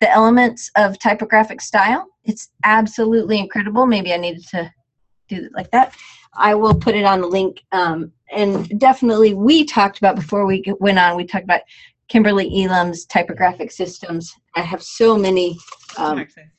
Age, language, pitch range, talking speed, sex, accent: 30-49, English, 185-240 Hz, 160 wpm, female, American